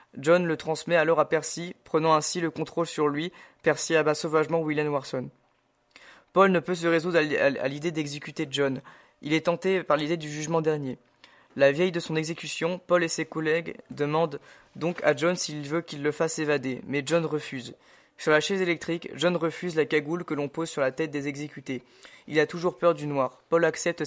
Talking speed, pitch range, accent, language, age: 200 wpm, 150-170 Hz, French, French, 20-39